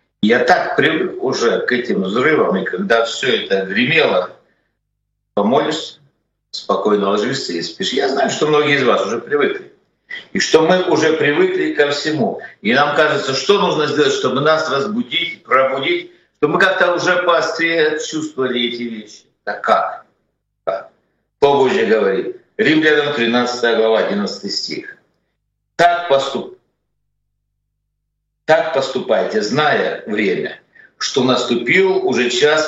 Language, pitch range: Russian, 120-175 Hz